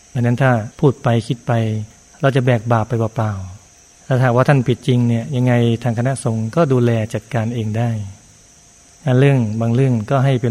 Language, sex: Thai, male